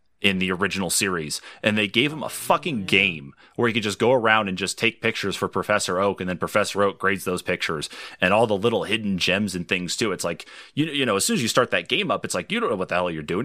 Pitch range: 90-110 Hz